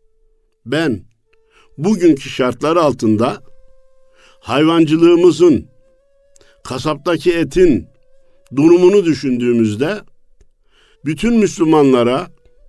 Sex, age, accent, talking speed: male, 60-79, native, 50 wpm